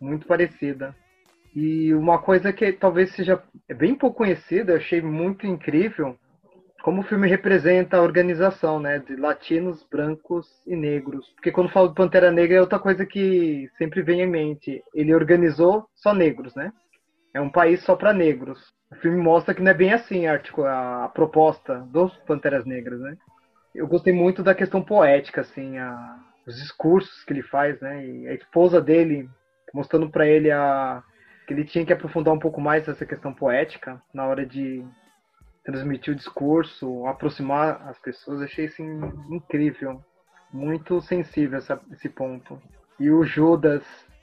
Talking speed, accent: 165 wpm, Brazilian